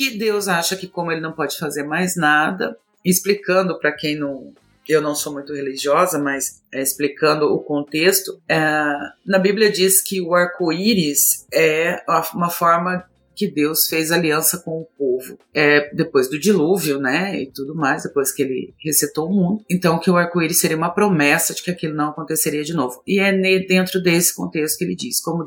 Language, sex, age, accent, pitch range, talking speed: Portuguese, female, 40-59, Brazilian, 150-185 Hz, 185 wpm